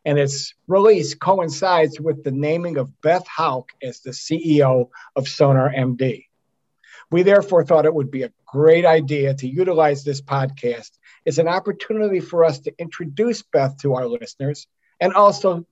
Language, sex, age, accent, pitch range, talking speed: English, male, 50-69, American, 135-165 Hz, 155 wpm